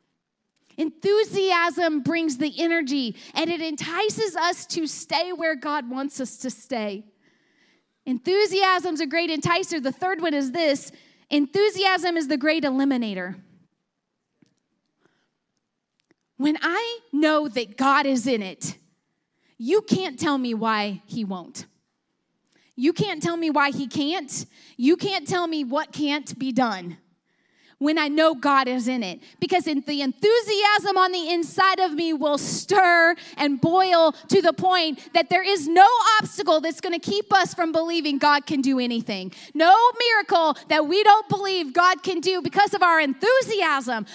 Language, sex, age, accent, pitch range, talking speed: English, female, 30-49, American, 285-385 Hz, 150 wpm